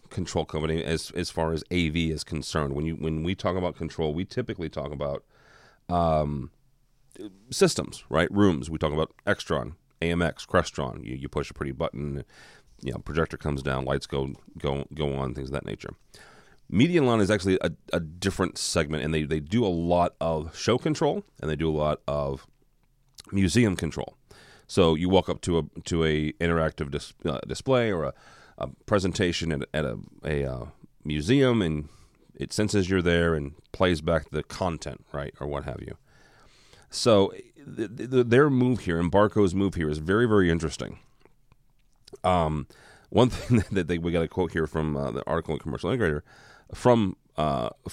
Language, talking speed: English, 185 wpm